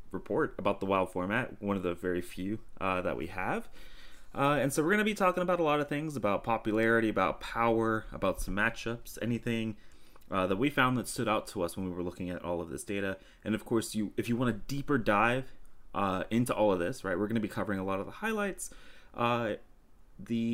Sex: male